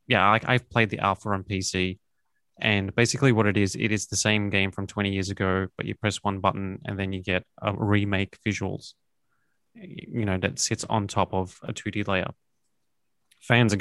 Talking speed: 205 wpm